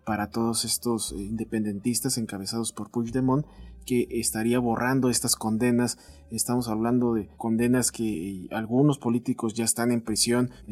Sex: male